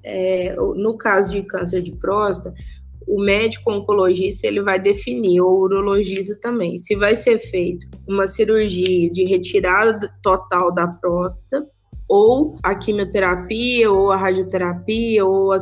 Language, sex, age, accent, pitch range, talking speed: Portuguese, female, 20-39, Brazilian, 190-245 Hz, 130 wpm